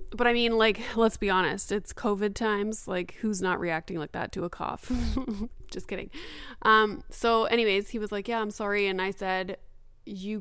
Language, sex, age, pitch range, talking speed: English, female, 20-39, 185-220 Hz, 195 wpm